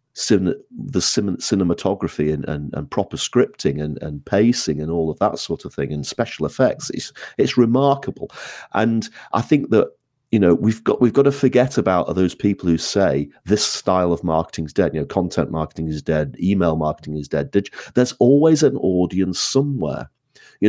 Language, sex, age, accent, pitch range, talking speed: English, male, 40-59, British, 85-125 Hz, 175 wpm